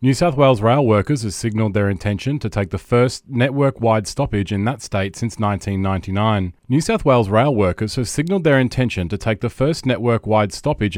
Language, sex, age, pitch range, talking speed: English, male, 30-49, 95-125 Hz, 190 wpm